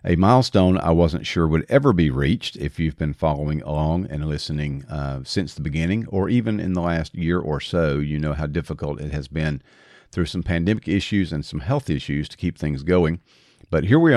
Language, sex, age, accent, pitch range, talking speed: English, male, 50-69, American, 75-90 Hz, 210 wpm